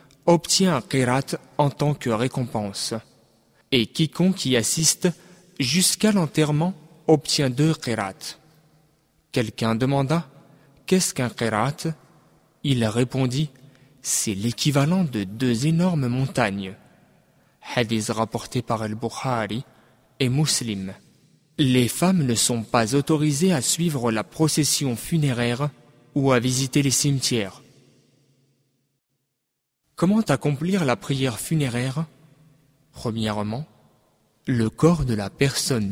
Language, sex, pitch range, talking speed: French, male, 115-150 Hz, 105 wpm